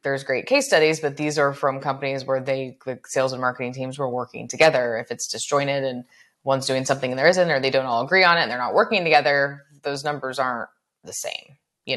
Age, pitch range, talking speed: 20-39, 130-165 Hz, 235 wpm